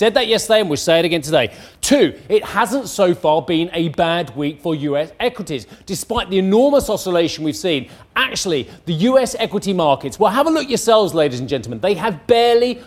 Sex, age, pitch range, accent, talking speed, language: male, 30-49, 155-215 Hz, British, 200 wpm, English